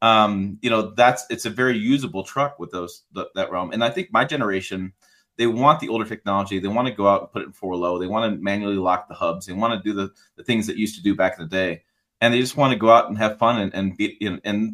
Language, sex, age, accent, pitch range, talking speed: English, male, 30-49, American, 105-160 Hz, 285 wpm